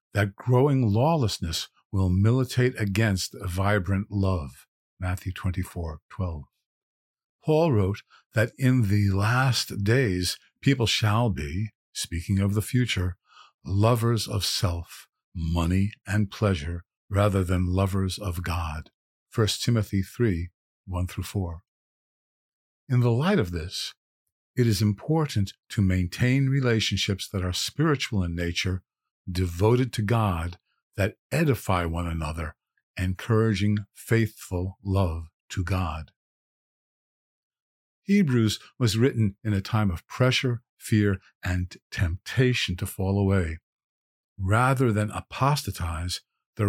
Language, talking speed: English, 110 wpm